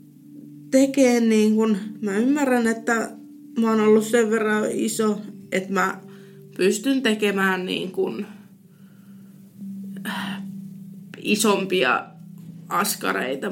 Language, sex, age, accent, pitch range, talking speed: Finnish, female, 20-39, native, 195-245 Hz, 90 wpm